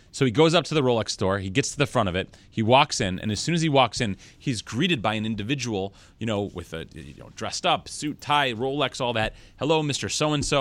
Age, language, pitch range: 30-49, English, 100-135 Hz